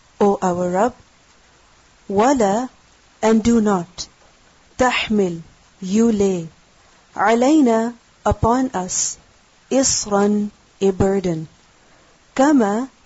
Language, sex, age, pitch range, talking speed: English, female, 40-59, 195-230 Hz, 80 wpm